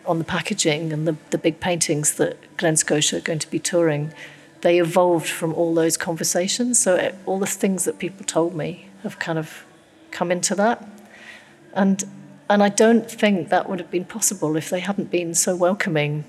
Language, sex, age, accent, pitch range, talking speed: English, female, 40-59, British, 155-180 Hz, 195 wpm